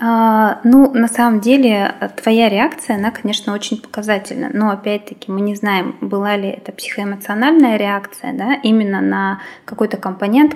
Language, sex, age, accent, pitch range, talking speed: Russian, female, 20-39, native, 195-230 Hz, 150 wpm